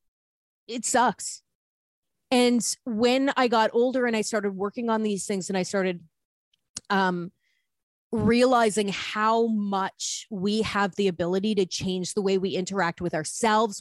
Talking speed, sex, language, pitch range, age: 145 wpm, female, English, 190-235 Hz, 30-49